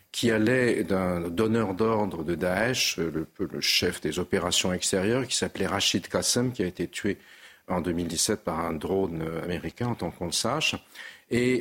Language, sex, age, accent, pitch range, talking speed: French, male, 50-69, French, 90-110 Hz, 170 wpm